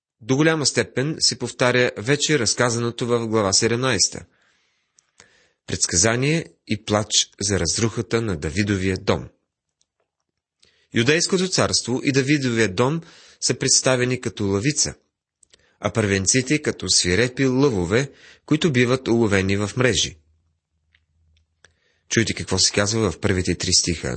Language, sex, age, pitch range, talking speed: Bulgarian, male, 30-49, 95-130 Hz, 110 wpm